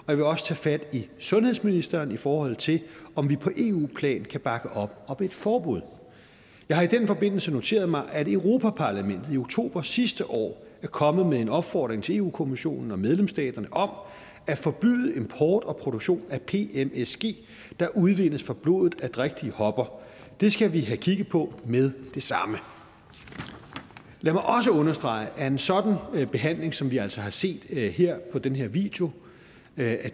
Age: 40-59